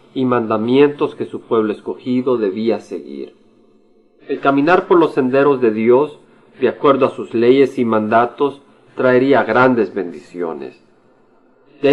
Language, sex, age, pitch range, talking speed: Spanish, male, 40-59, 115-145 Hz, 130 wpm